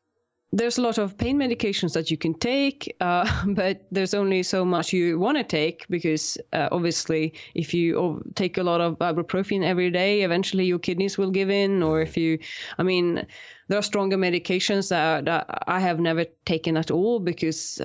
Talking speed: 190 wpm